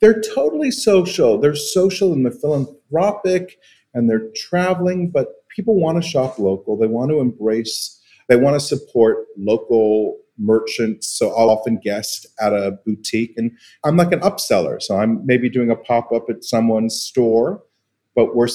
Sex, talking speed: male, 160 wpm